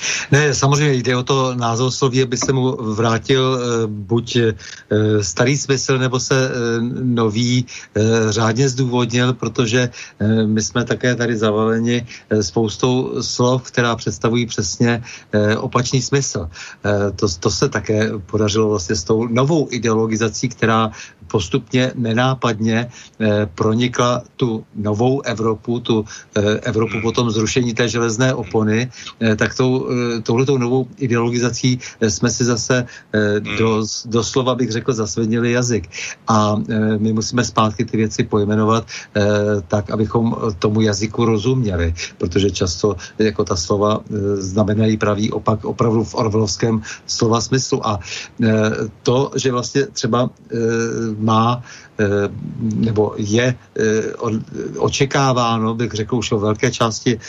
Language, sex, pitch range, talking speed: Czech, male, 110-125 Hz, 120 wpm